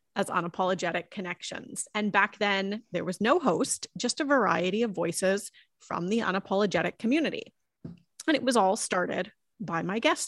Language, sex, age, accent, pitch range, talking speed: English, female, 30-49, American, 185-245 Hz, 160 wpm